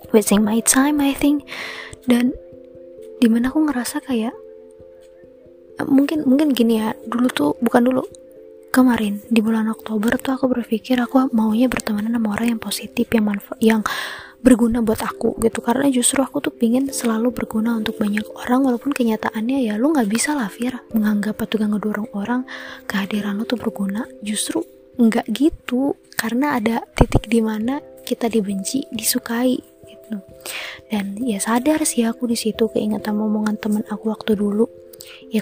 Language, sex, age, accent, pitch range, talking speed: English, female, 20-39, Indonesian, 210-255 Hz, 150 wpm